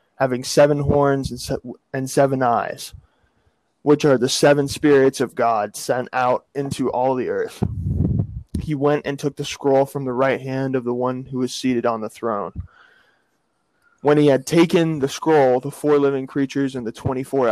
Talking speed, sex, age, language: 175 wpm, male, 20-39, English